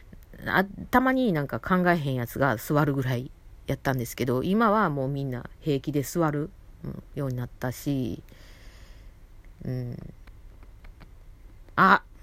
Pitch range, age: 105-160 Hz, 40-59